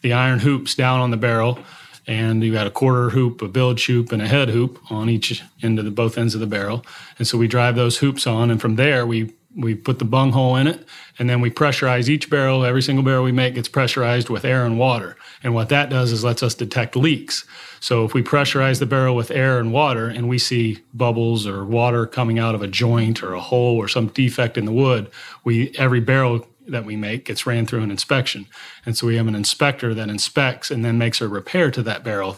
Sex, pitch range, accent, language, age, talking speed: male, 115-130 Hz, American, English, 40-59, 240 wpm